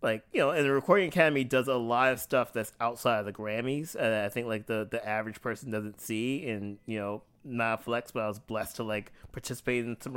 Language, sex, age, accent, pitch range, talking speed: English, male, 30-49, American, 110-135 Hz, 250 wpm